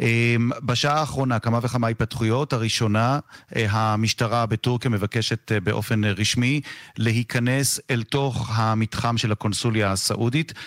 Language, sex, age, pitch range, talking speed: Hebrew, male, 40-59, 105-125 Hz, 100 wpm